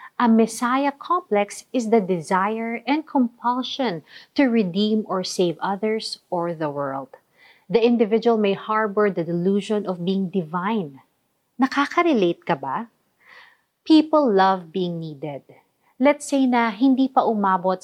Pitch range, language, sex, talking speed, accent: 185-245 Hz, Filipino, female, 130 wpm, native